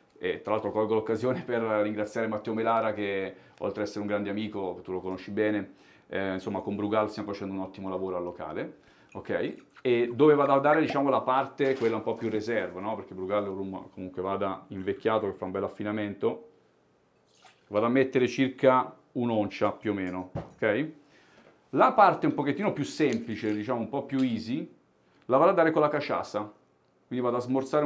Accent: native